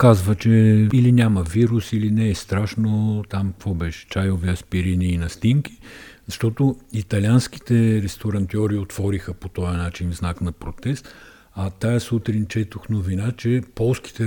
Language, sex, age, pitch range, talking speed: Bulgarian, male, 50-69, 95-115 Hz, 140 wpm